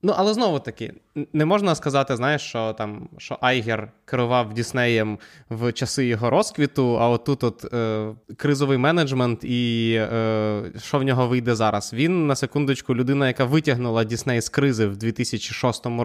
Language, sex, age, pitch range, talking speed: Ukrainian, male, 20-39, 115-145 Hz, 155 wpm